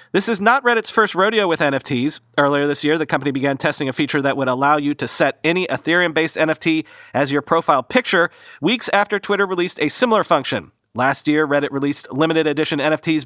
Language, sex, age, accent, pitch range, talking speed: English, male, 40-59, American, 140-180 Hz, 200 wpm